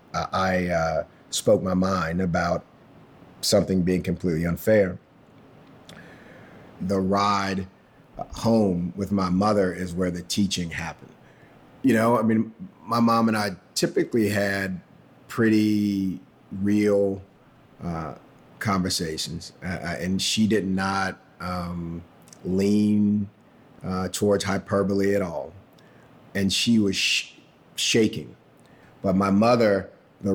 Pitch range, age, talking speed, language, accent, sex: 90-105 Hz, 40-59, 110 wpm, English, American, male